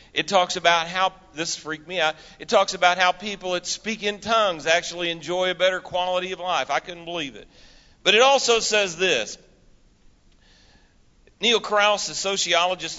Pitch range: 145-185 Hz